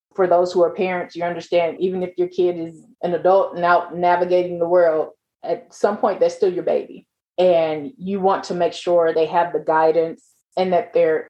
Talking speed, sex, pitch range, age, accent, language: 200 wpm, female, 165-190 Hz, 20-39, American, English